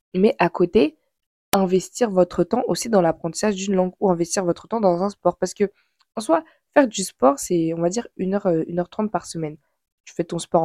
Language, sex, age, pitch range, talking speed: French, female, 20-39, 170-215 Hz, 215 wpm